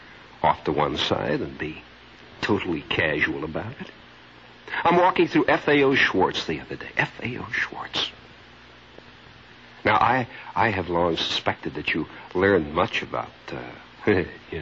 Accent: American